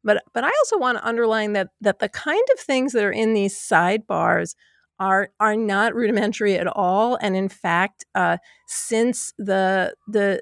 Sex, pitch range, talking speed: female, 185-235 Hz, 180 wpm